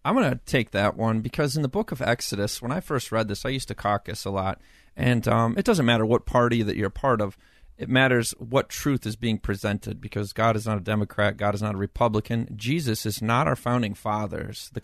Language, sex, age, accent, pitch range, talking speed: English, male, 40-59, American, 105-130 Hz, 245 wpm